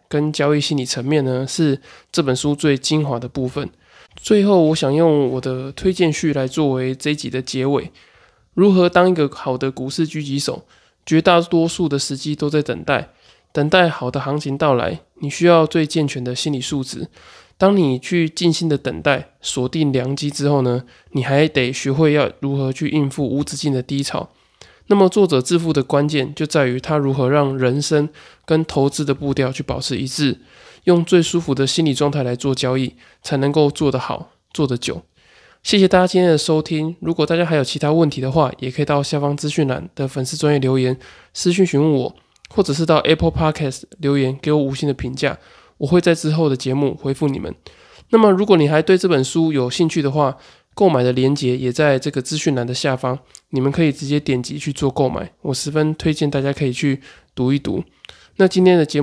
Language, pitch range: Chinese, 135-160 Hz